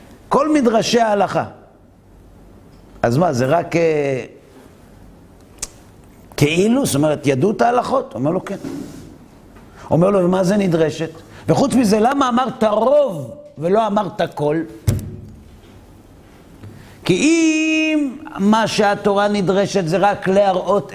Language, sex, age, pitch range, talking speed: Hebrew, male, 50-69, 135-210 Hz, 110 wpm